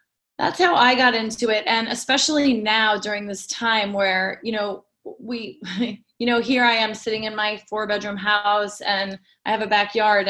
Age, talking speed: 20-39, 185 wpm